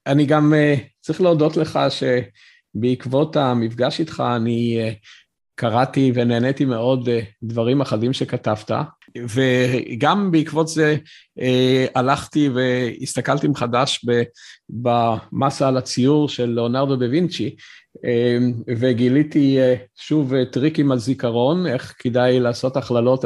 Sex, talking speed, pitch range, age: male, 115 wpm, 120-155 Hz, 50-69